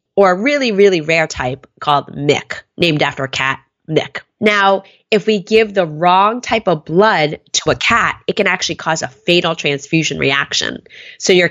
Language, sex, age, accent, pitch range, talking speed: English, female, 20-39, American, 155-210 Hz, 180 wpm